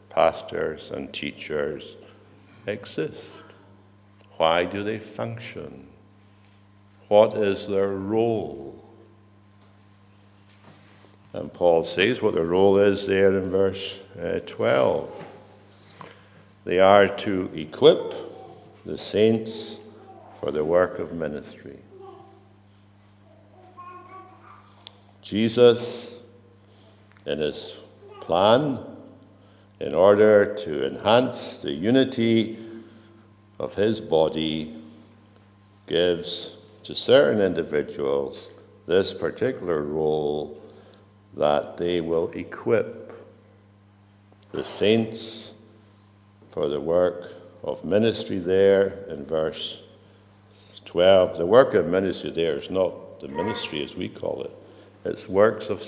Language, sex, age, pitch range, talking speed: English, male, 60-79, 100-110 Hz, 90 wpm